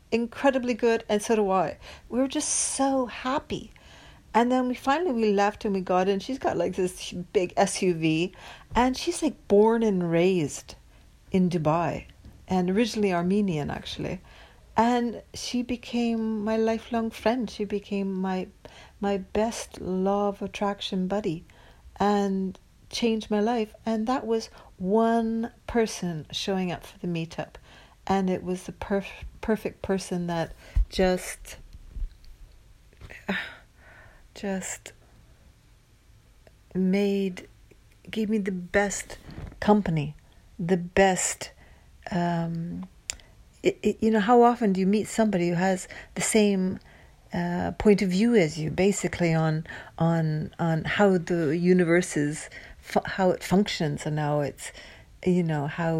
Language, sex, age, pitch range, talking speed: English, female, 60-79, 175-220 Hz, 130 wpm